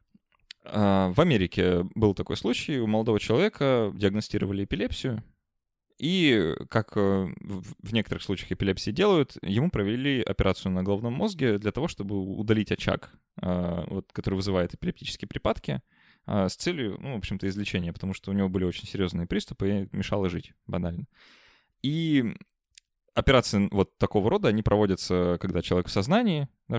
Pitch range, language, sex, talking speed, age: 95-110 Hz, Russian, male, 135 wpm, 20-39